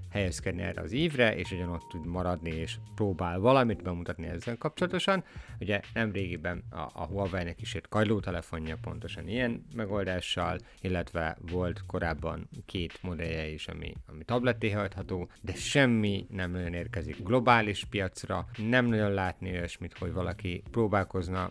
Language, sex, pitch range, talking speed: Hungarian, male, 90-115 Hz, 135 wpm